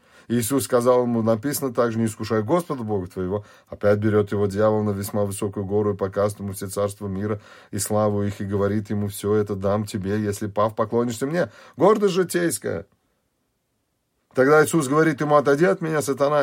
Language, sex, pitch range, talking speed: Russian, male, 100-125 Hz, 175 wpm